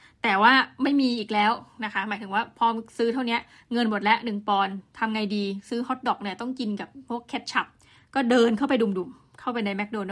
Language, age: Thai, 20-39